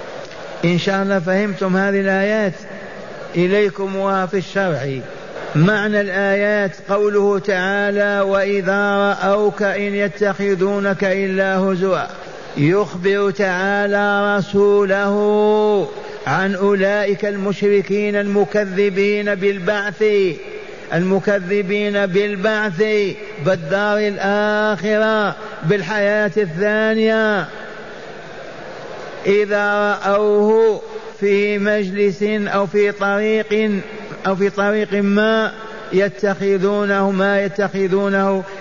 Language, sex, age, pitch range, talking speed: Arabic, male, 50-69, 190-205 Hz, 75 wpm